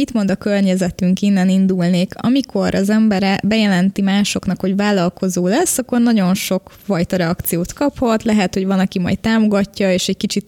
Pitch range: 180-210 Hz